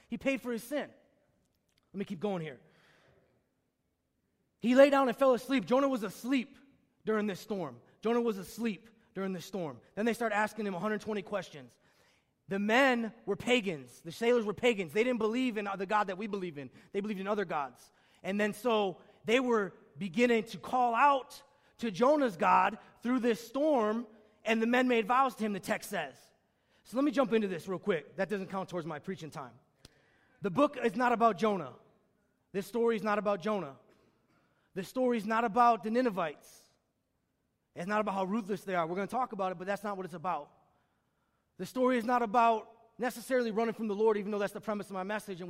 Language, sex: English, male